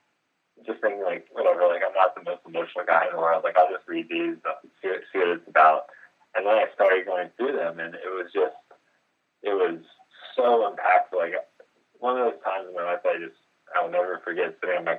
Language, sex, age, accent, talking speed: English, male, 20-39, American, 225 wpm